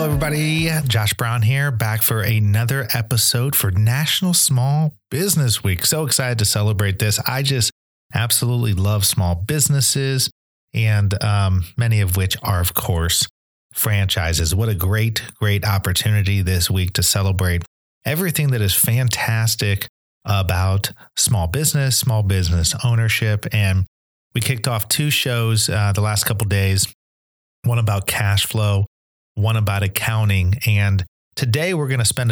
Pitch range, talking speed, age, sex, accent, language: 95-120 Hz, 145 wpm, 30-49, male, American, English